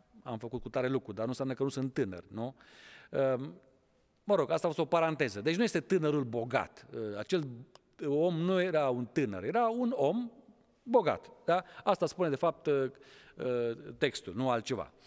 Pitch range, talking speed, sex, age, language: 135-225 Hz, 170 wpm, male, 50-69, Romanian